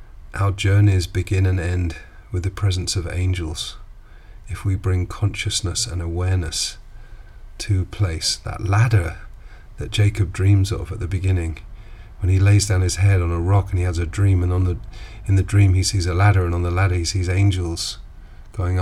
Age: 40-59